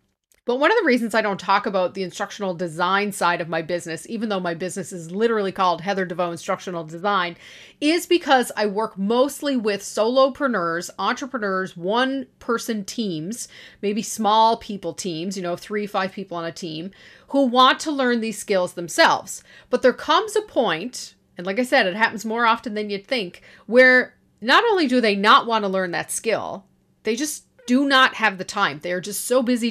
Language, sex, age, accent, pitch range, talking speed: English, female, 40-59, American, 185-250 Hz, 190 wpm